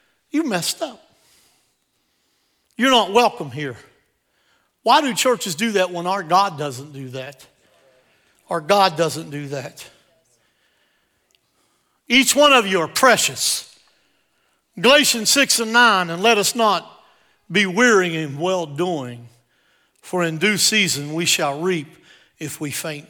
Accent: American